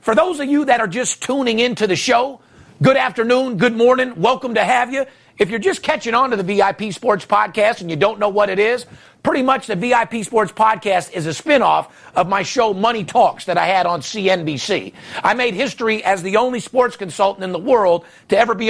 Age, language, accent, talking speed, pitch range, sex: 50-69, English, American, 220 wpm, 205-245 Hz, male